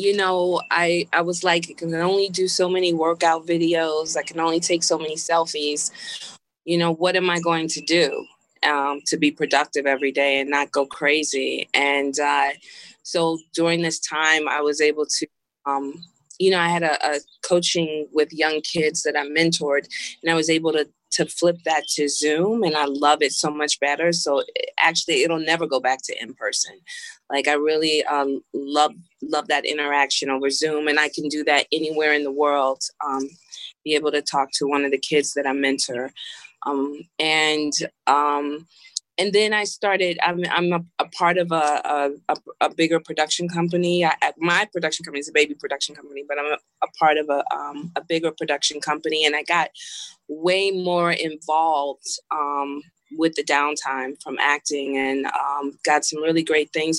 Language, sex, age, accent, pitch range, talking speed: English, female, 30-49, American, 145-170 Hz, 185 wpm